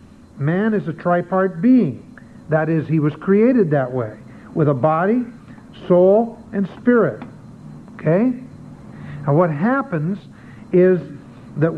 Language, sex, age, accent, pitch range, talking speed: English, male, 60-79, American, 170-235 Hz, 120 wpm